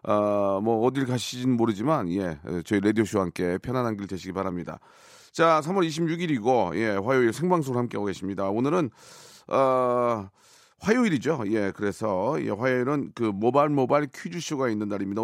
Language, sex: Korean, male